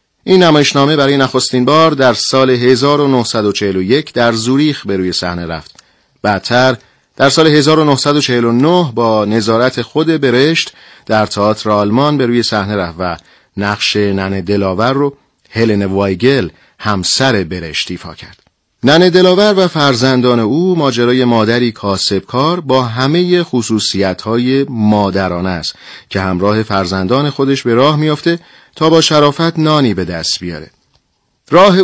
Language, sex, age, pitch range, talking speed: Persian, male, 40-59, 105-145 Hz, 130 wpm